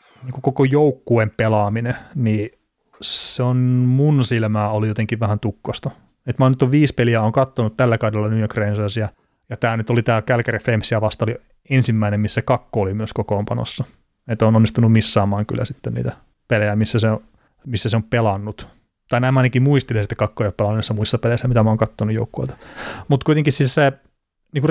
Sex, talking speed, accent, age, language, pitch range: male, 180 wpm, native, 30-49, Finnish, 110-125 Hz